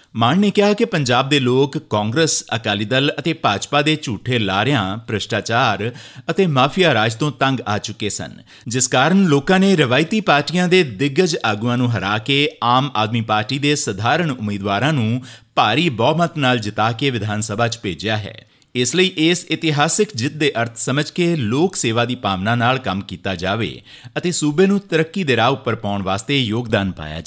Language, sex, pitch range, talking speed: Punjabi, male, 110-155 Hz, 150 wpm